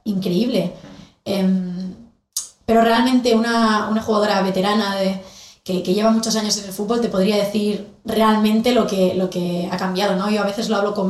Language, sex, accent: Spanish, female, Spanish